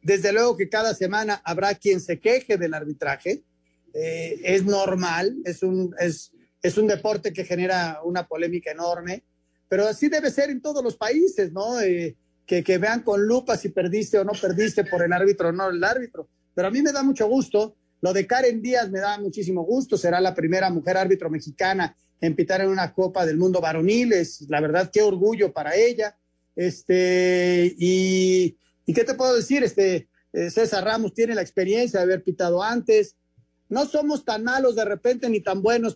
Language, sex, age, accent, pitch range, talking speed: Spanish, male, 40-59, Mexican, 180-225 Hz, 190 wpm